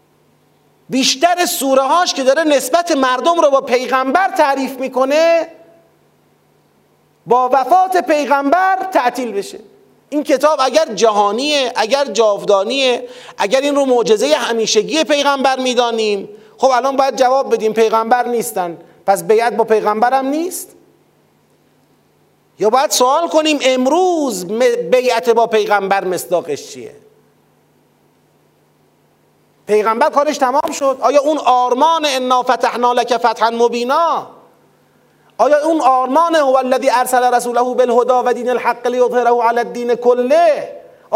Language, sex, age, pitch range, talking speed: Persian, male, 40-59, 240-300 Hz, 120 wpm